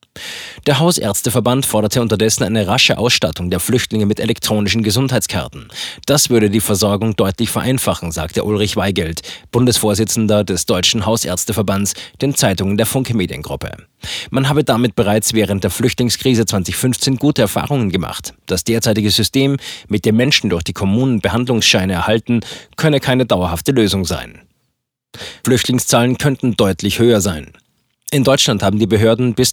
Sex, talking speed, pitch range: male, 135 wpm, 100-125 Hz